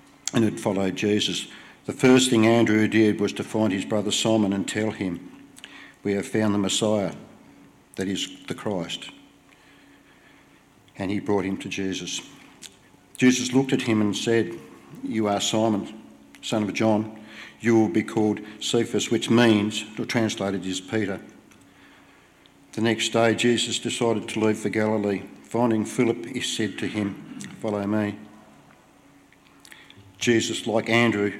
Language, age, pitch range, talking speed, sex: English, 50-69, 100-115 Hz, 145 wpm, male